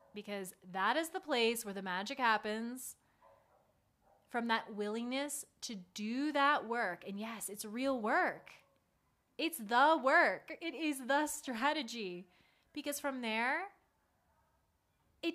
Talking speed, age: 125 wpm, 20-39